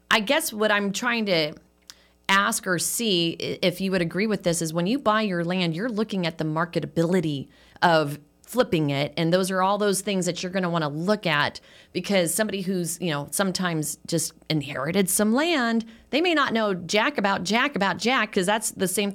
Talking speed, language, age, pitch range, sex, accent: 205 wpm, English, 30-49, 175-225 Hz, female, American